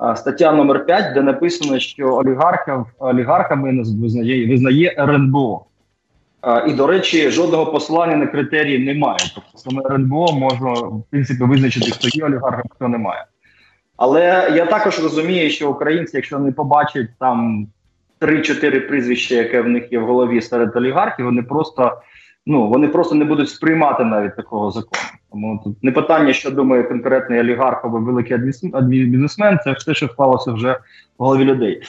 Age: 20-39